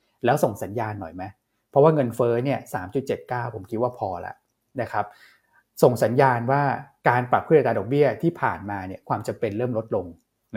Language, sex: Thai, male